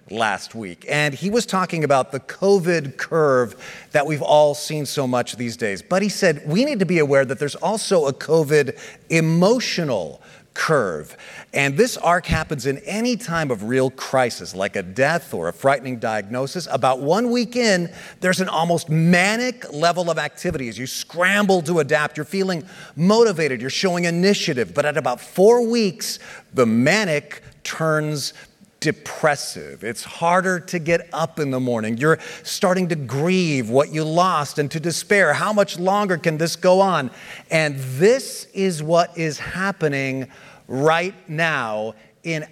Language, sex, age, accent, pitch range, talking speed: English, male, 40-59, American, 140-185 Hz, 160 wpm